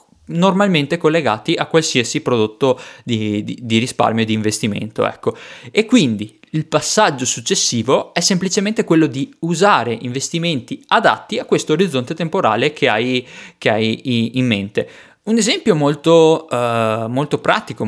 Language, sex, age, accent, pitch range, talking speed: Italian, male, 20-39, native, 115-160 Hz, 140 wpm